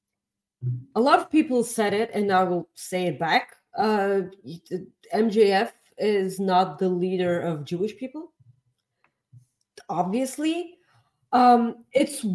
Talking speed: 115 wpm